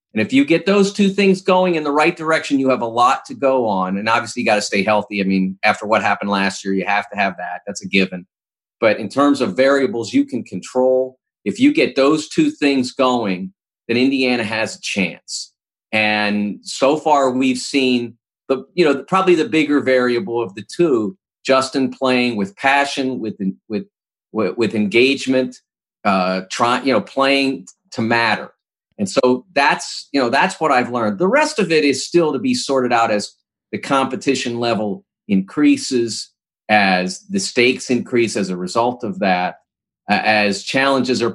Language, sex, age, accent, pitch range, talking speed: English, male, 40-59, American, 105-140 Hz, 185 wpm